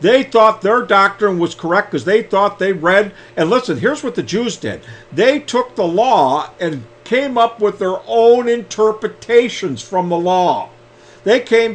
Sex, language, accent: male, English, American